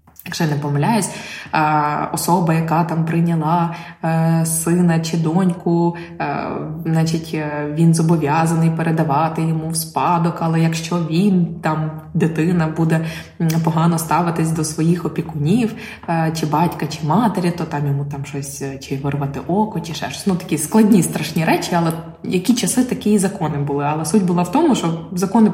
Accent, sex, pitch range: native, female, 160-190 Hz